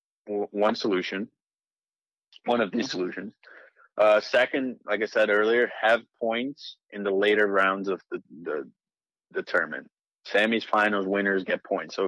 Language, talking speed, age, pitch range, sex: English, 145 wpm, 20-39, 105-155 Hz, male